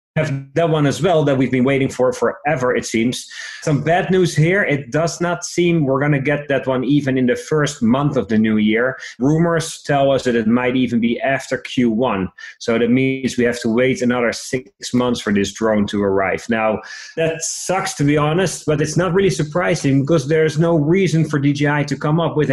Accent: Dutch